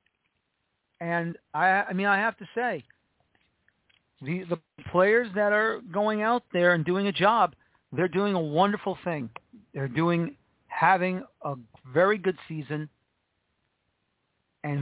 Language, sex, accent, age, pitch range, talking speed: English, male, American, 40-59, 145-185 Hz, 135 wpm